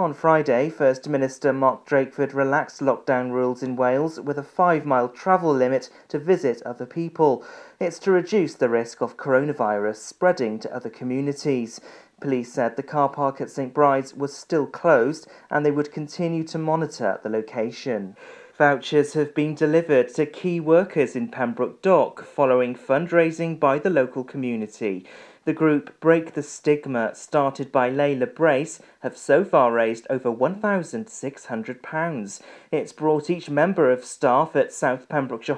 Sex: male